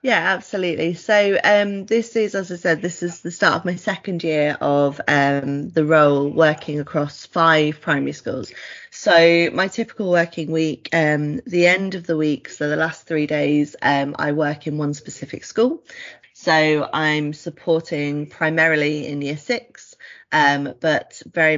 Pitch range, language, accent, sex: 145-165 Hz, English, British, female